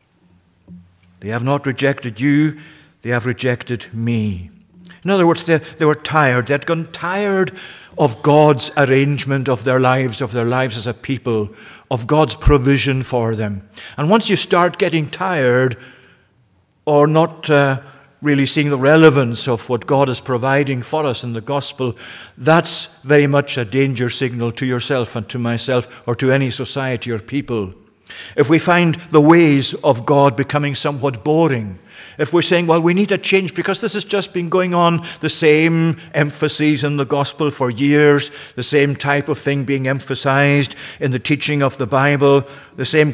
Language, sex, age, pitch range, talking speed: English, male, 50-69, 130-150 Hz, 175 wpm